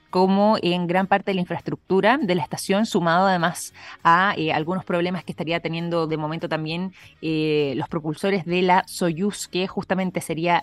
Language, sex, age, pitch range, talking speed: Spanish, female, 20-39, 160-195 Hz, 175 wpm